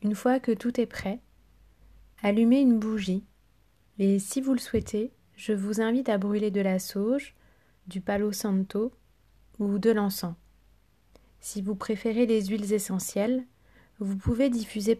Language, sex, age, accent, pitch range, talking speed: French, female, 30-49, French, 185-240 Hz, 150 wpm